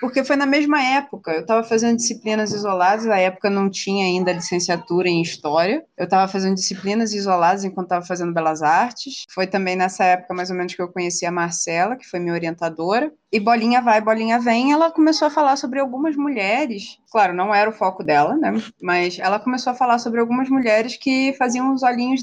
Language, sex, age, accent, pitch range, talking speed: Portuguese, female, 20-39, Brazilian, 180-245 Hz, 200 wpm